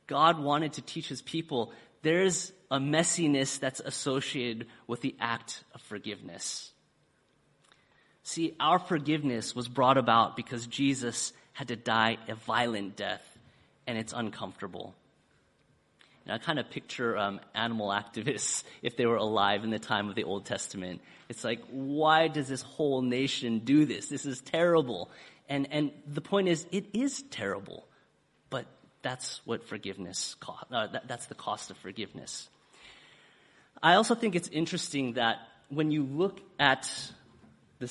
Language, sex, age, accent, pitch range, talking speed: English, male, 30-49, American, 120-155 Hz, 150 wpm